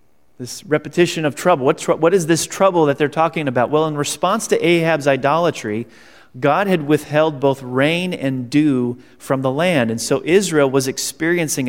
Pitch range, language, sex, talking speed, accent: 120-150 Hz, English, male, 175 wpm, American